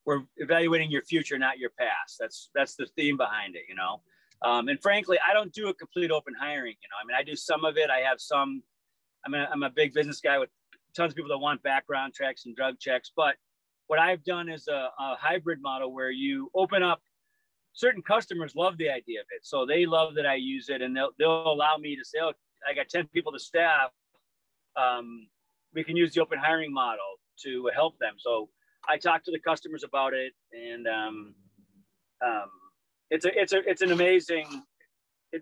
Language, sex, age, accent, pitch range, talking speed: English, male, 40-59, American, 130-175 Hz, 215 wpm